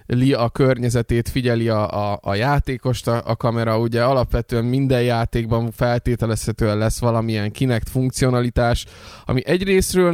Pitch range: 115-135 Hz